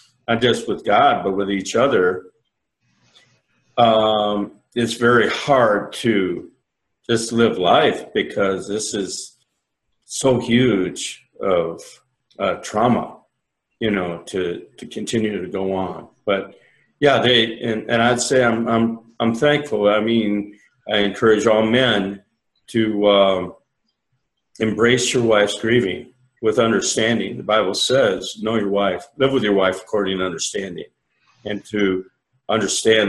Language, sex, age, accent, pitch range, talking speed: English, male, 50-69, American, 100-120 Hz, 130 wpm